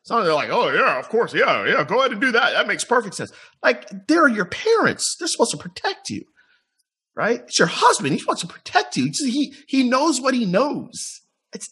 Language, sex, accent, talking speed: English, male, American, 225 wpm